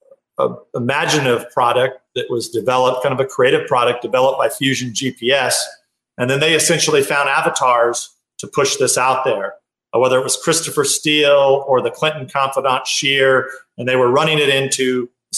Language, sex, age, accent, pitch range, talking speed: English, male, 40-59, American, 130-180 Hz, 170 wpm